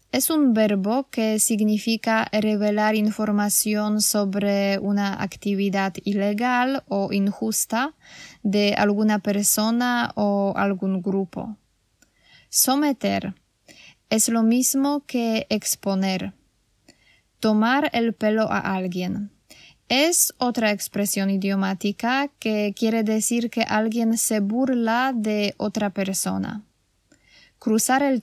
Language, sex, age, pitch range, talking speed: Polish, female, 10-29, 200-230 Hz, 100 wpm